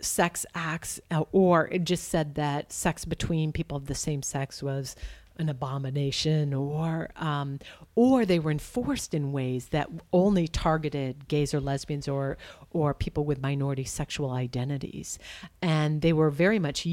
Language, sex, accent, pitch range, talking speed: English, female, American, 140-180 Hz, 150 wpm